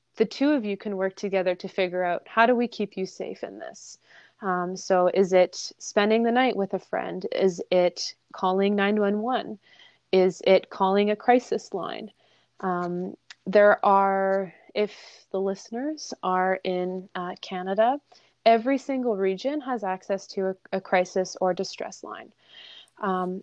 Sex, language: female, English